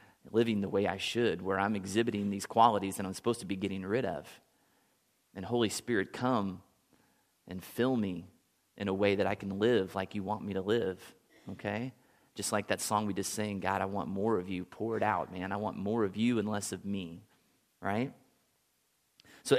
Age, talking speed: 30-49, 205 wpm